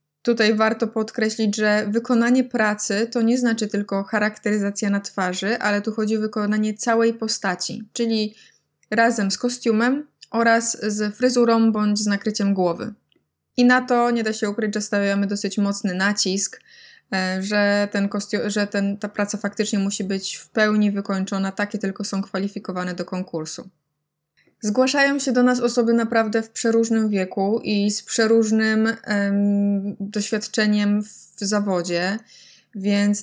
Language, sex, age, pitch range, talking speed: Polish, female, 20-39, 195-220 Hz, 140 wpm